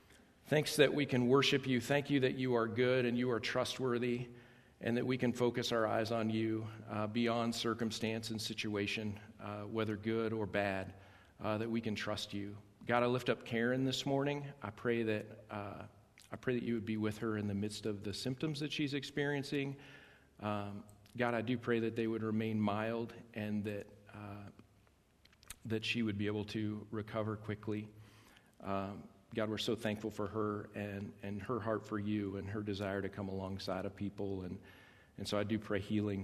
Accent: American